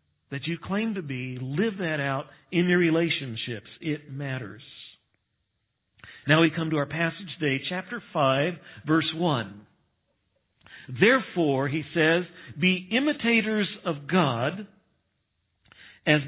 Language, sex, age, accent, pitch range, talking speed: English, male, 60-79, American, 135-195 Hz, 120 wpm